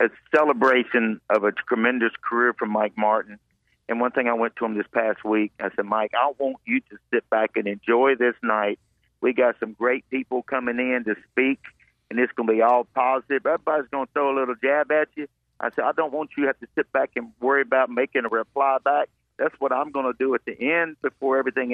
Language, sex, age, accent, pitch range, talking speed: English, male, 50-69, American, 115-140 Hz, 235 wpm